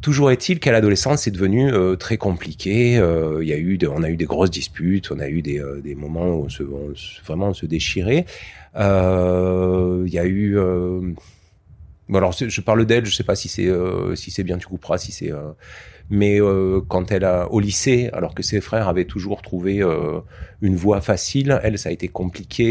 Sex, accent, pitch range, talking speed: male, French, 90-115 Hz, 225 wpm